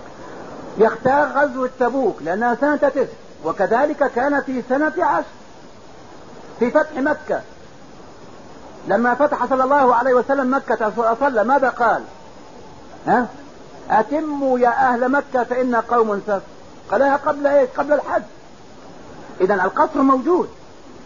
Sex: male